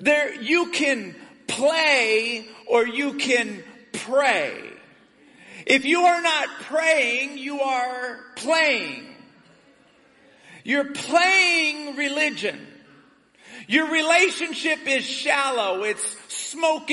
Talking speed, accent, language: 90 wpm, American, English